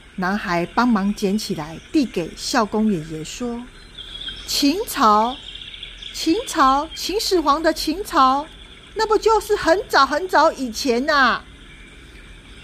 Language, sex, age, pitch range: Chinese, female, 40-59, 190-290 Hz